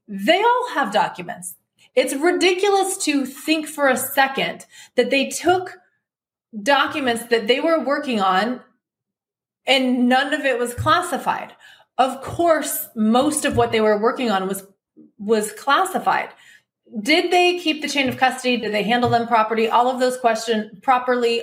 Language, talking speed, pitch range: English, 155 wpm, 215-290 Hz